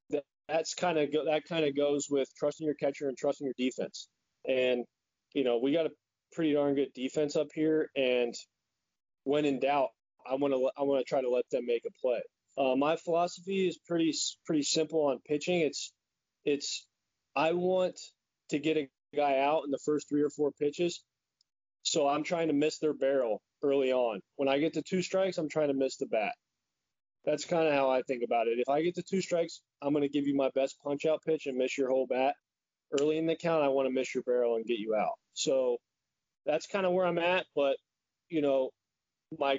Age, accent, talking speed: 20-39, American, 220 wpm